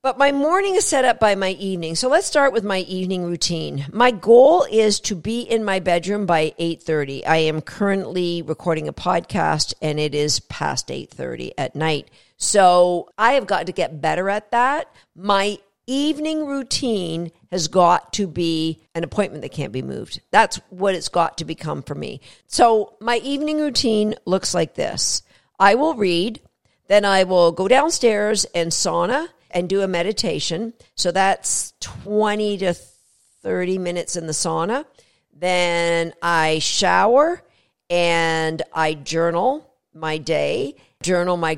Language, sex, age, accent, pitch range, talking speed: English, female, 50-69, American, 165-225 Hz, 155 wpm